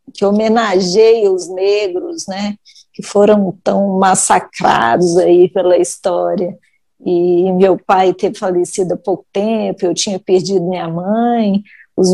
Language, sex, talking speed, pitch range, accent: Portuguese, female, 130 wpm, 185-225 Hz, Brazilian